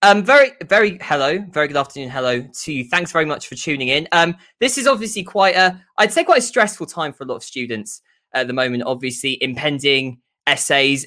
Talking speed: 210 wpm